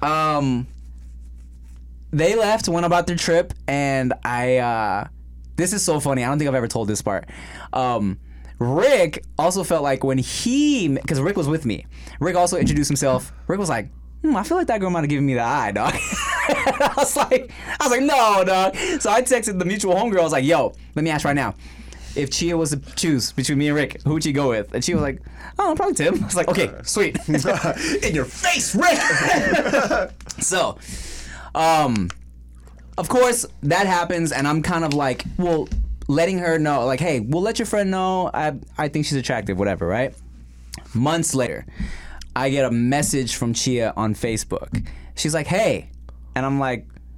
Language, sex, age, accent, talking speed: English, male, 20-39, American, 195 wpm